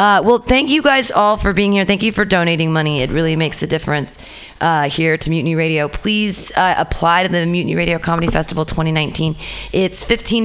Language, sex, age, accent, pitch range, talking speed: English, female, 30-49, American, 145-180 Hz, 205 wpm